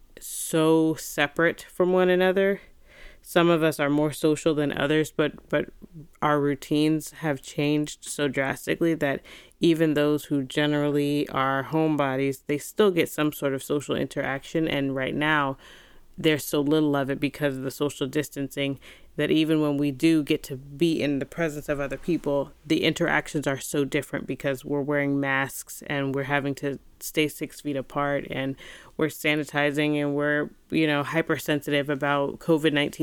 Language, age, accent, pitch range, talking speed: English, 20-39, American, 140-155 Hz, 165 wpm